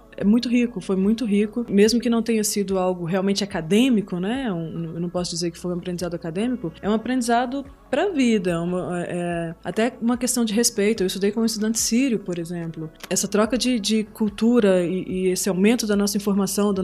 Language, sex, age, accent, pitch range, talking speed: Portuguese, female, 20-39, Brazilian, 185-230 Hz, 210 wpm